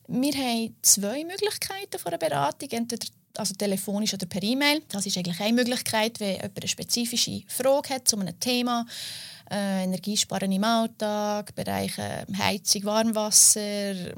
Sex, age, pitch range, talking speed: female, 30-49, 195-230 Hz, 140 wpm